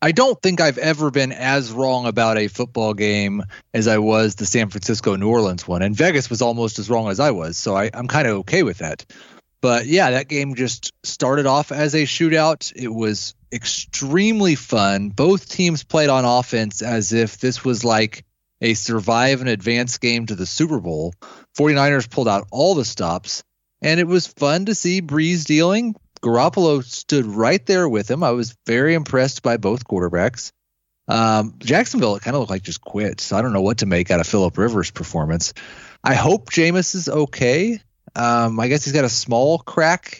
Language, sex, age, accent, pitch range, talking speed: English, male, 30-49, American, 115-155 Hz, 195 wpm